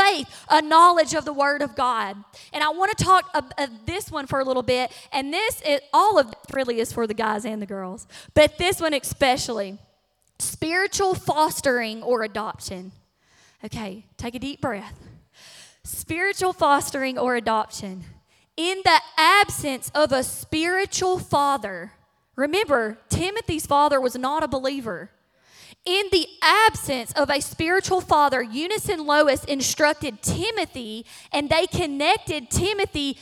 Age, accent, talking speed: 20-39, American, 145 wpm